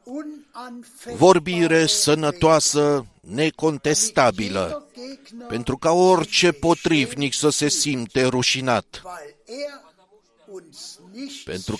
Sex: male